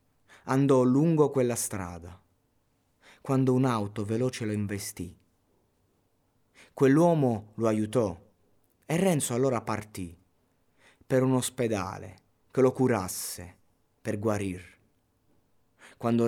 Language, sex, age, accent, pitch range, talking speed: Italian, male, 30-49, native, 95-115 Hz, 90 wpm